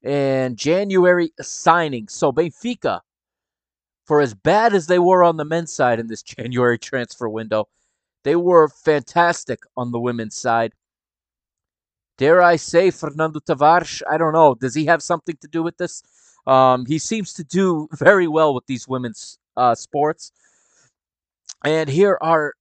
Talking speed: 155 wpm